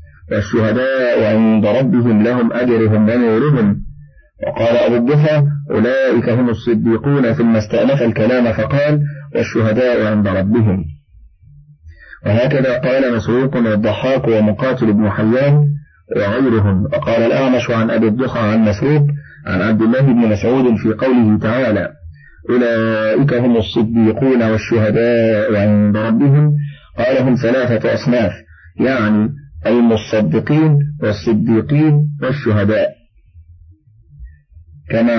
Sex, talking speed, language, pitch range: male, 95 wpm, Arabic, 110-130 Hz